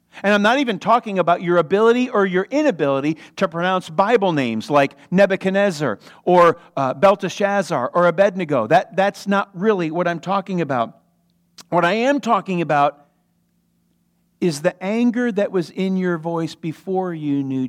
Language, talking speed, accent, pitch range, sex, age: English, 155 wpm, American, 165-185 Hz, male, 50-69